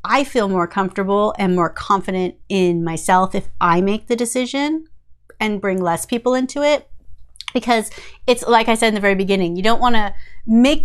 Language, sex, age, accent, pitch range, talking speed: English, female, 30-49, American, 170-230 Hz, 190 wpm